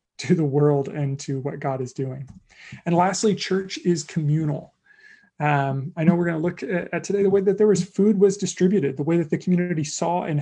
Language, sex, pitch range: English, male, 145-180 Hz